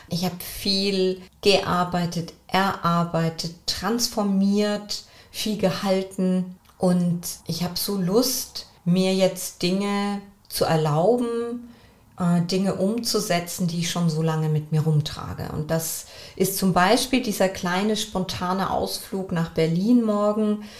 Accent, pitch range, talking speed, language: German, 175-210 Hz, 120 wpm, German